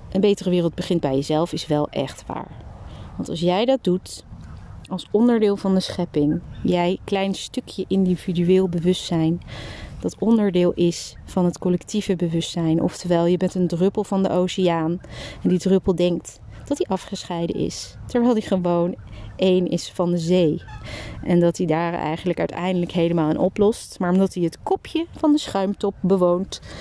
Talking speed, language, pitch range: 165 wpm, Dutch, 170-195 Hz